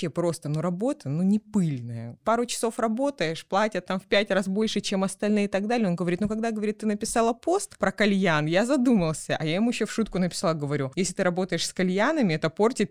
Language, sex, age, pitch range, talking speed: Russian, female, 20-39, 165-210 Hz, 220 wpm